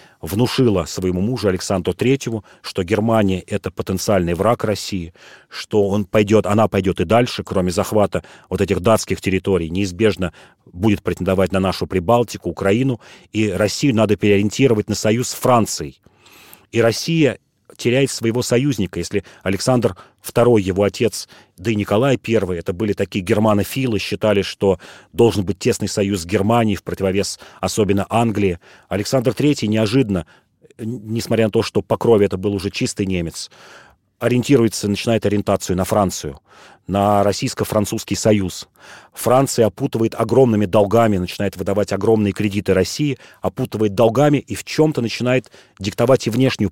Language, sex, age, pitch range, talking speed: Russian, male, 40-59, 95-115 Hz, 135 wpm